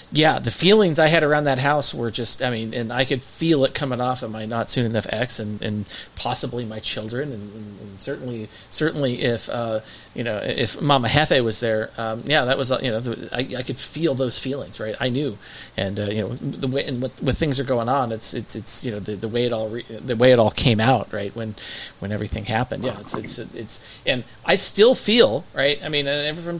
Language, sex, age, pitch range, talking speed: English, male, 40-59, 110-140 Hz, 245 wpm